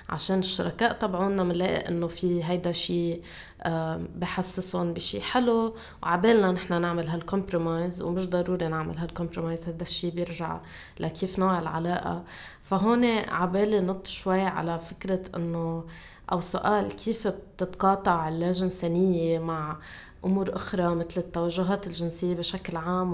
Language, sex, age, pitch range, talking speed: Arabic, female, 20-39, 165-185 Hz, 115 wpm